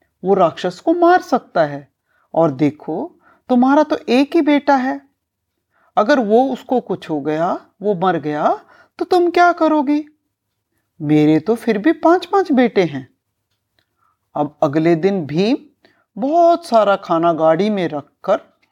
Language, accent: Hindi, native